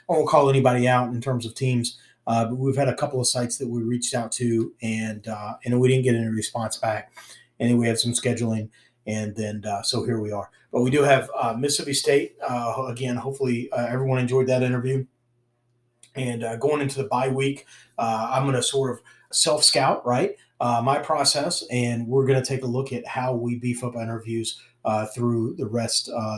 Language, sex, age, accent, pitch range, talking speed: English, male, 30-49, American, 120-135 Hz, 220 wpm